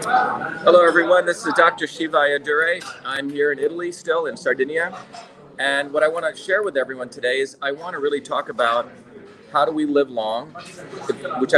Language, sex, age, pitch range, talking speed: English, male, 40-59, 130-180 Hz, 185 wpm